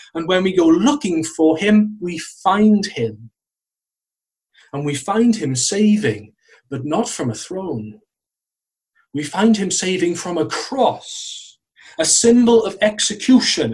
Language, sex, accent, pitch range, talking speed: English, male, British, 155-210 Hz, 135 wpm